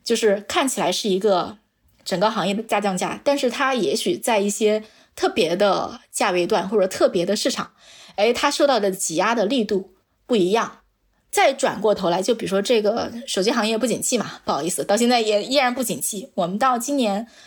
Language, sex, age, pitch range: Chinese, female, 20-39, 200-265 Hz